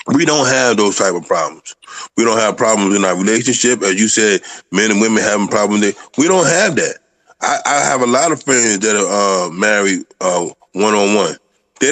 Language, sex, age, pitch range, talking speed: English, male, 20-39, 105-135 Hz, 215 wpm